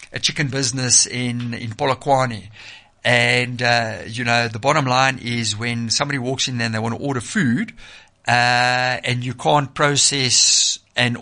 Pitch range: 120-140 Hz